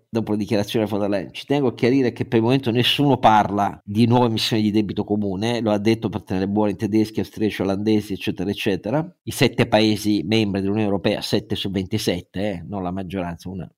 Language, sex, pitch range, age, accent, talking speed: Italian, male, 105-130 Hz, 50-69, native, 210 wpm